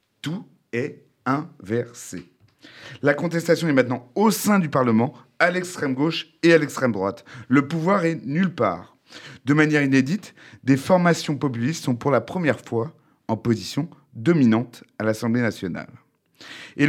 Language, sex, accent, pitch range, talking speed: French, male, French, 120-160 Hz, 140 wpm